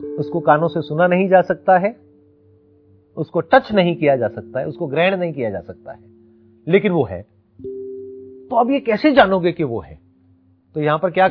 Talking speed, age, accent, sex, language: 195 wpm, 40-59, native, male, Hindi